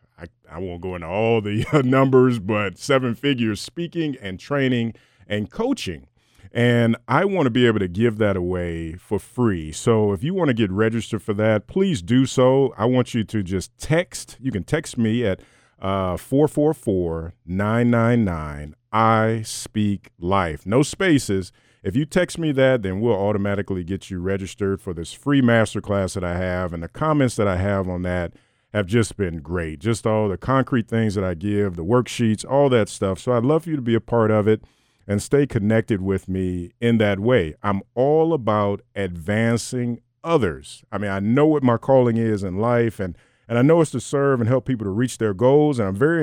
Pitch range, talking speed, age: 95-125 Hz, 195 wpm, 40-59